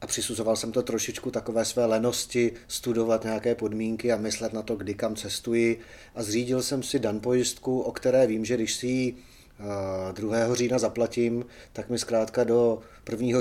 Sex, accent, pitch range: male, native, 110-135 Hz